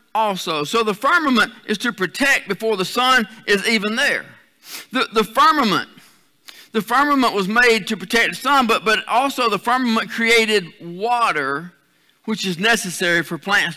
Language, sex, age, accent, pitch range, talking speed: English, male, 50-69, American, 205-265 Hz, 155 wpm